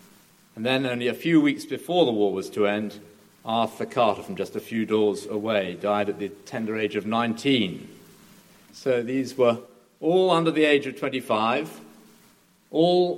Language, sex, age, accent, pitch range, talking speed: English, male, 50-69, British, 105-150 Hz, 170 wpm